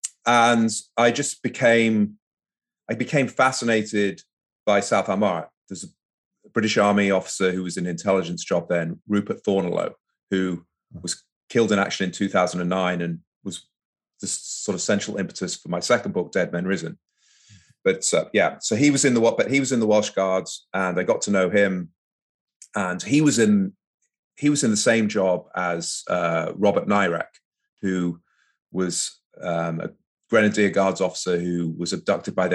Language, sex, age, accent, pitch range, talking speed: English, male, 30-49, British, 90-115 Hz, 170 wpm